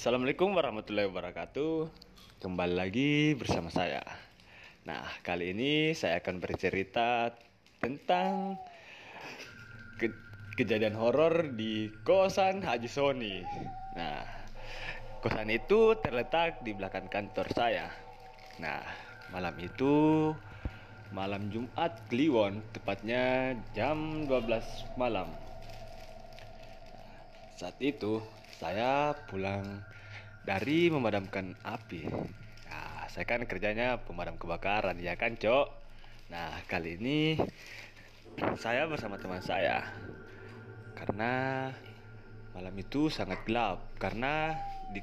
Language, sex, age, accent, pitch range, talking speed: Indonesian, male, 20-39, native, 100-130 Hz, 90 wpm